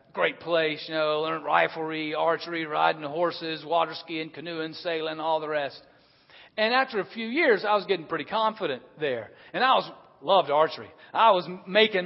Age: 40-59